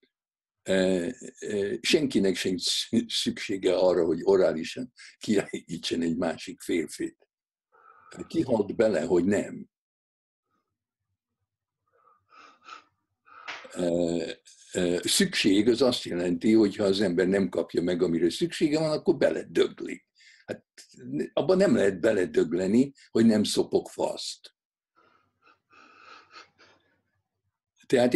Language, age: Hungarian, 60-79